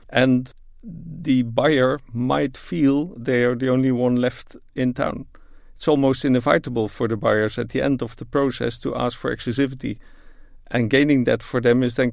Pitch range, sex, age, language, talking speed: 115-135 Hz, male, 50-69, English, 180 wpm